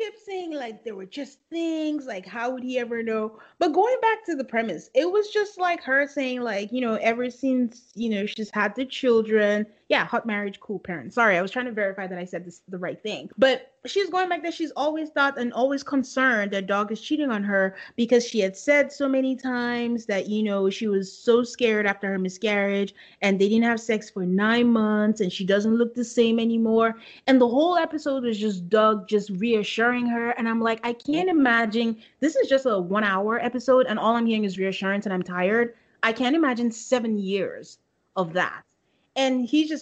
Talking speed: 215 wpm